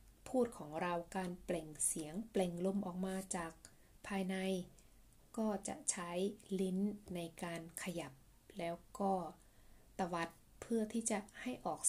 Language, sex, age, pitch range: Thai, female, 20-39, 165-210 Hz